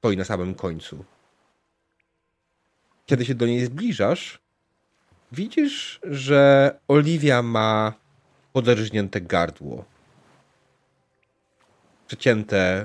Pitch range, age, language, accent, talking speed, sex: 100-150 Hz, 40-59, Polish, native, 75 wpm, male